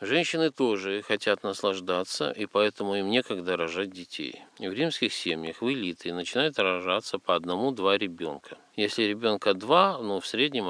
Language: Russian